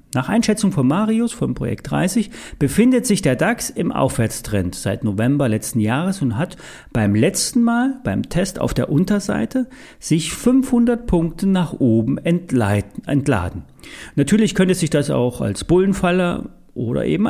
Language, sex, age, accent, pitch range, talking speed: German, male, 40-59, German, 120-195 Hz, 145 wpm